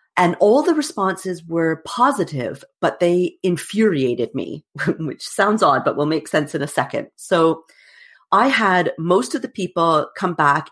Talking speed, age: 160 wpm, 40-59